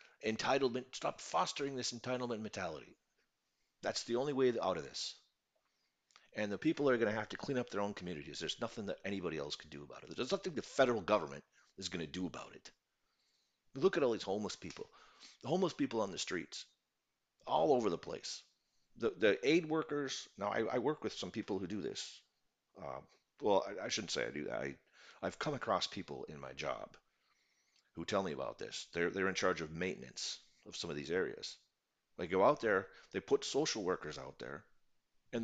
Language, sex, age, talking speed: English, male, 40-59, 205 wpm